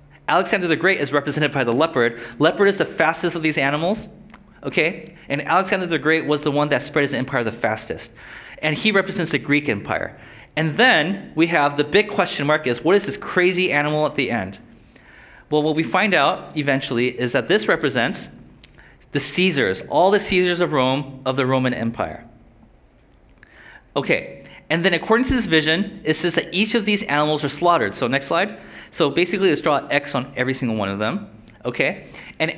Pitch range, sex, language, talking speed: 140-185 Hz, male, English, 195 wpm